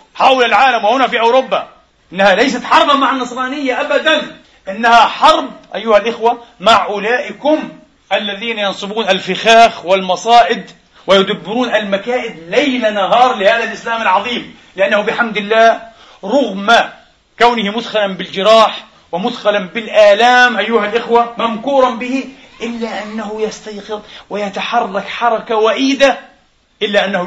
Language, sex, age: Arabic, male, 40-59